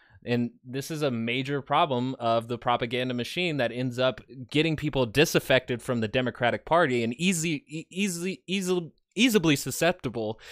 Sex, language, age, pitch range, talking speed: male, English, 20-39, 120-150 Hz, 150 wpm